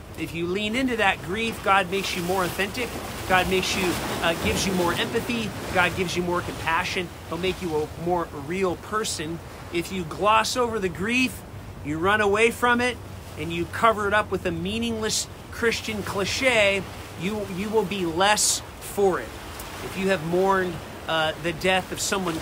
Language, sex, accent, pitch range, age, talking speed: English, male, American, 160-205 Hz, 40-59, 180 wpm